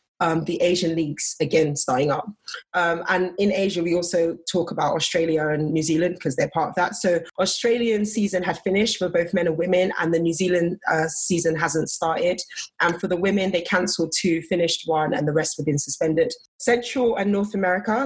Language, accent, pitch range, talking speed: English, British, 170-205 Hz, 205 wpm